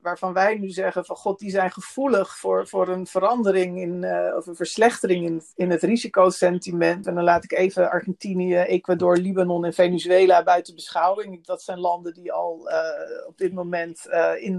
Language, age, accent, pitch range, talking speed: Dutch, 50-69, Dutch, 175-195 Hz, 185 wpm